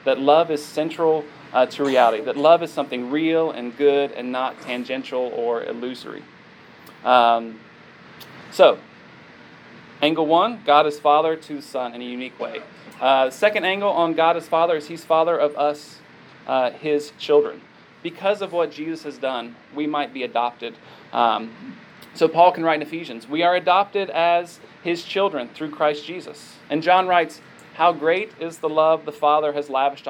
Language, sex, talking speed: English, male, 170 wpm